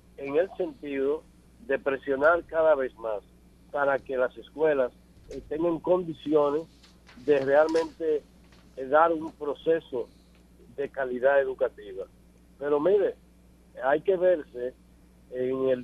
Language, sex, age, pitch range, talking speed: Spanish, male, 60-79, 130-170 Hz, 115 wpm